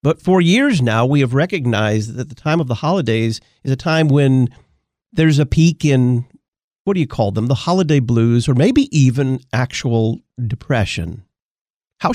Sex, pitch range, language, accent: male, 115-155 Hz, English, American